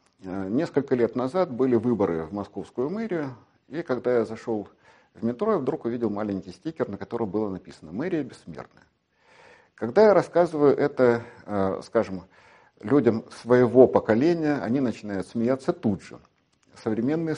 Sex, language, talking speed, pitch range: male, Russian, 135 wpm, 110-155 Hz